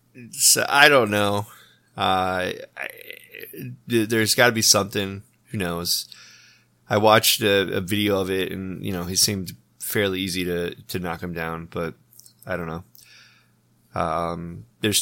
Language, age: English, 20-39